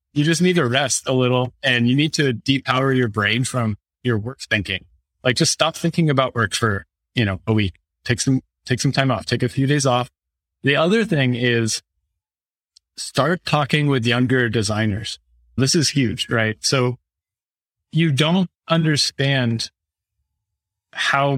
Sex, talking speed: male, 165 wpm